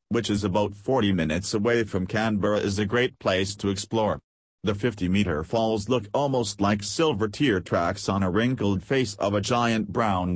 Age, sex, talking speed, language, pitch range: 40-59, male, 180 wpm, English, 95-115 Hz